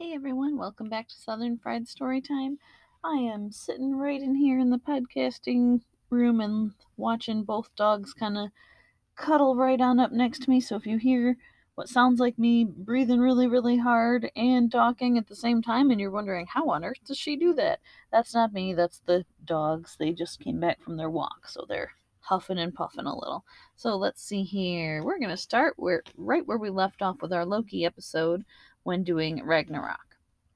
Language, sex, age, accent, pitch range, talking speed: English, female, 30-49, American, 170-235 Hz, 195 wpm